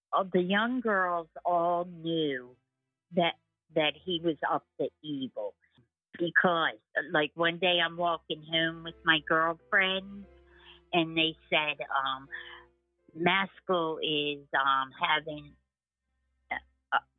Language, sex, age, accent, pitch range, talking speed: English, female, 50-69, American, 140-175 Hz, 110 wpm